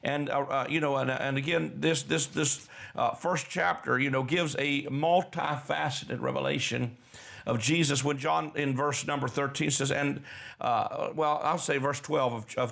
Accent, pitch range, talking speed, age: American, 125-150 Hz, 175 wpm, 50-69